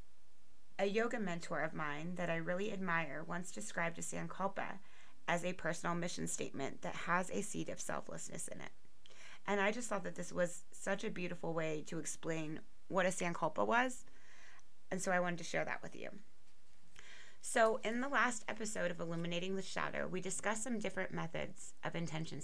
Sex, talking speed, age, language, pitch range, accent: female, 180 wpm, 30-49, English, 170-210 Hz, American